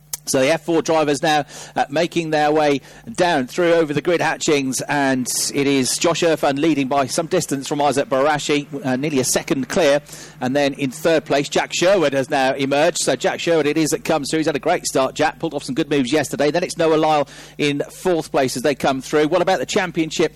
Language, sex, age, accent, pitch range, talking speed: English, male, 40-59, British, 130-160 Hz, 225 wpm